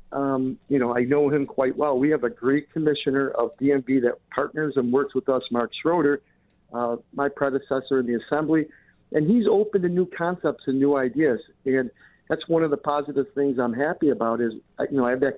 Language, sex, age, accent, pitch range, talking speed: English, male, 50-69, American, 135-175 Hz, 210 wpm